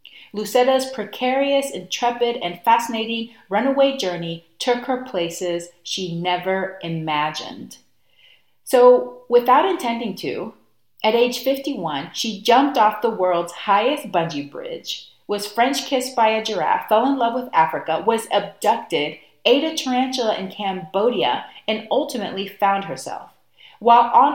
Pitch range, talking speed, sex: 175-250 Hz, 125 wpm, female